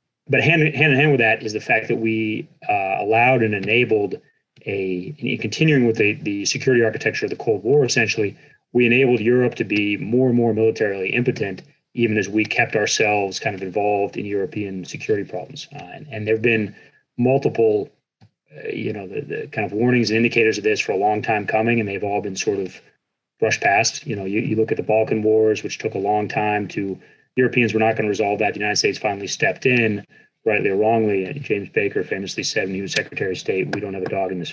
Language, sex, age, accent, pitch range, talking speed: English, male, 30-49, American, 100-125 Hz, 230 wpm